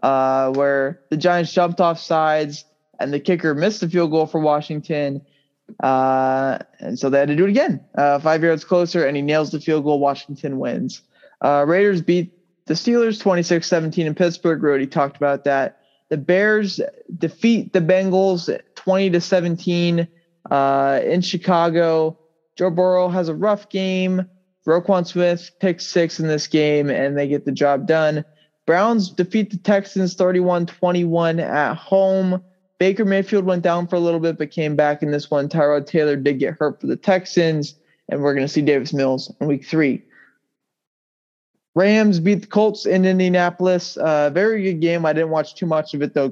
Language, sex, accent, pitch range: English, male, American, 145-185 Hz